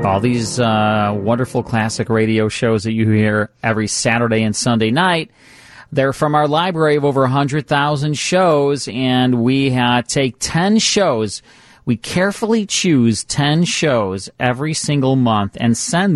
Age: 40-59